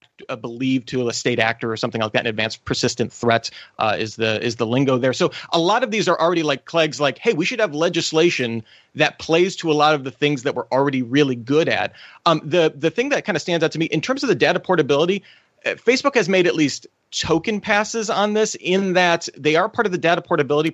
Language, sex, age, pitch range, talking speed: English, male, 30-49, 130-170 Hz, 245 wpm